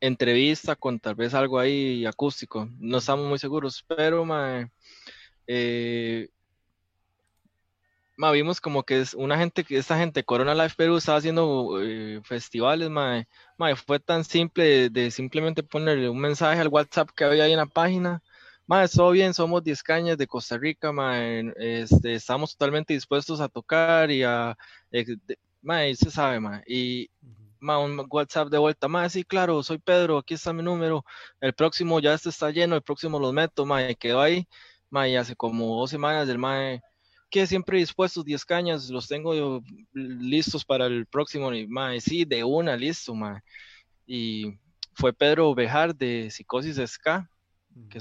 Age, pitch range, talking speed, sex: 20-39, 120-160 Hz, 165 wpm, male